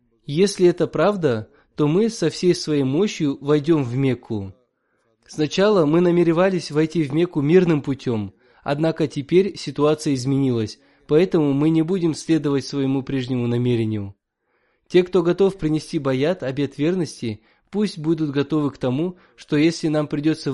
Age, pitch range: 20-39, 125-160 Hz